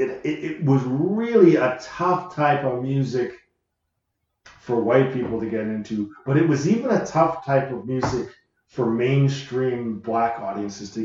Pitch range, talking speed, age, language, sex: 115-145 Hz, 165 wpm, 40-59, English, male